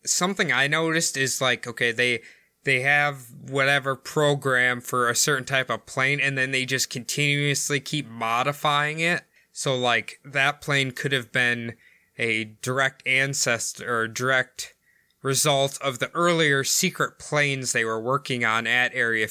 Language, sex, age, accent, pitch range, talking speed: English, male, 20-39, American, 125-150 Hz, 150 wpm